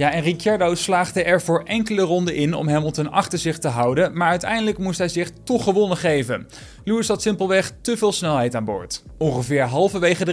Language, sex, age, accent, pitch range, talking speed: Dutch, male, 20-39, Dutch, 150-190 Hz, 200 wpm